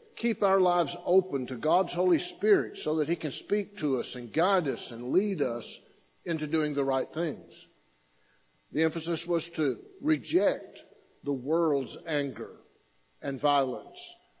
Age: 50-69